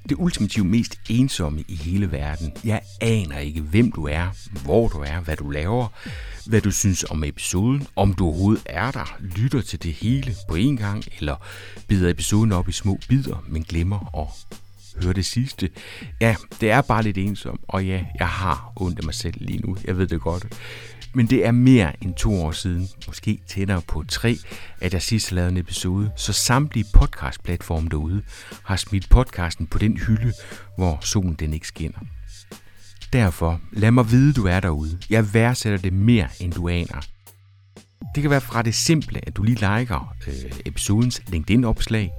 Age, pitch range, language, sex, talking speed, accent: 60-79, 85-110 Hz, Danish, male, 185 wpm, native